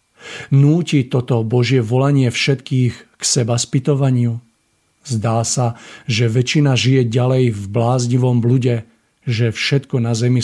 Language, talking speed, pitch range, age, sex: Slovak, 120 wpm, 115-135 Hz, 50-69, male